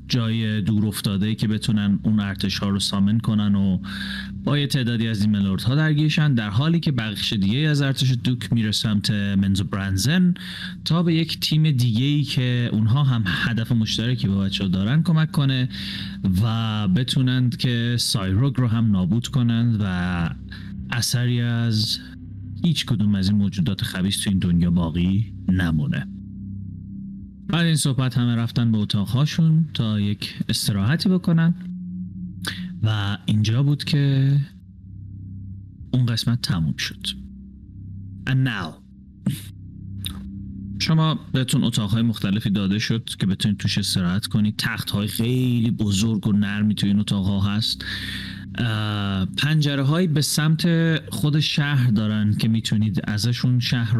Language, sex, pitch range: Persian, male, 100-130 Hz